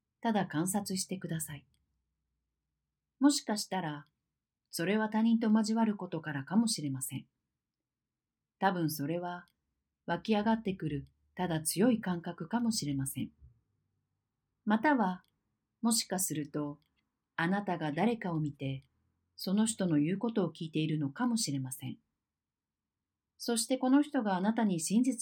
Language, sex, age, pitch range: Japanese, female, 40-59, 145-215 Hz